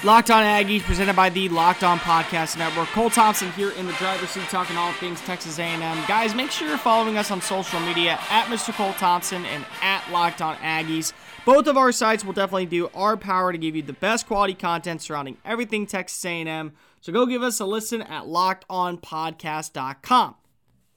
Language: English